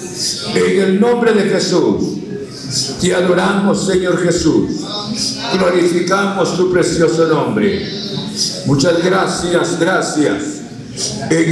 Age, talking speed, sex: 60-79, 90 wpm, male